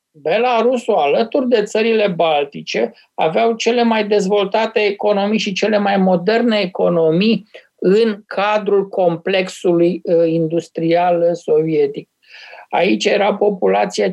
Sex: male